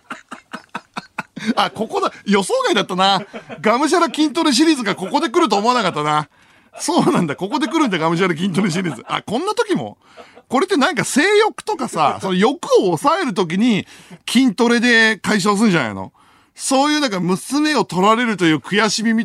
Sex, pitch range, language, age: male, 150-240 Hz, Japanese, 50-69